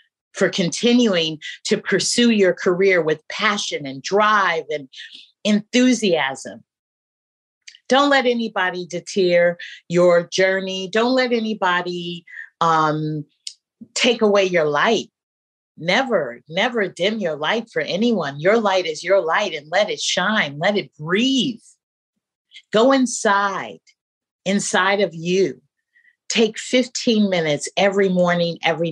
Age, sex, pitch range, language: 40-59, female, 170-235 Hz, English